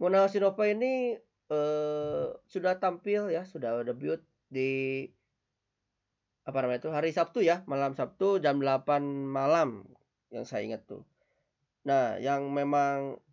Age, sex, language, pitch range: 20-39, male, Indonesian, 130-155 Hz